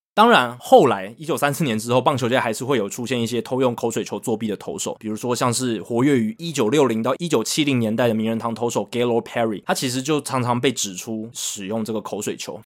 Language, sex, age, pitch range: Chinese, male, 20-39, 110-145 Hz